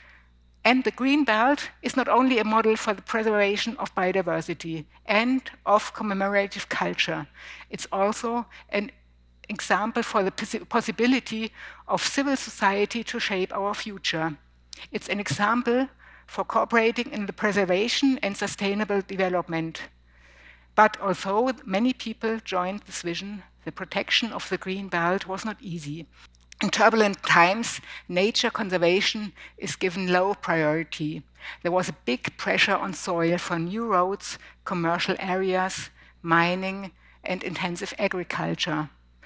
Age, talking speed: 60-79, 130 wpm